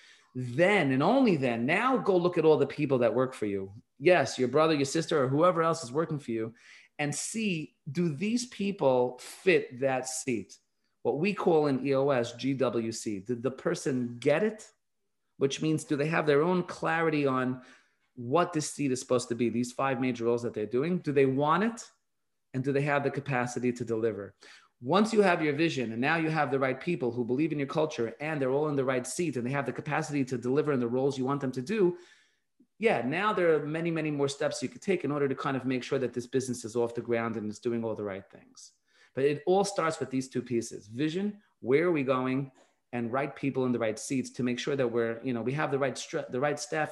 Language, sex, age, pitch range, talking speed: English, male, 30-49, 125-155 Hz, 240 wpm